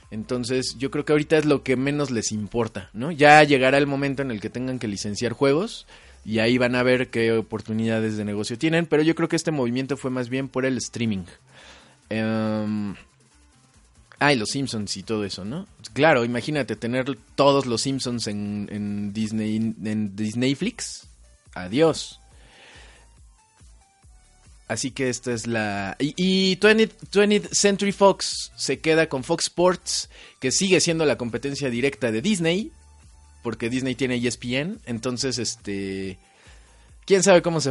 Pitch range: 110-145 Hz